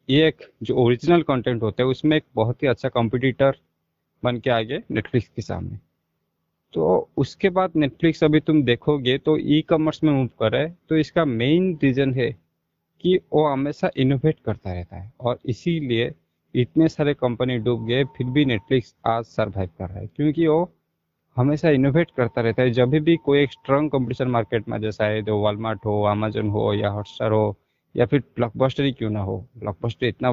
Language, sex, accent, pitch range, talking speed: Hindi, male, native, 110-145 Hz, 160 wpm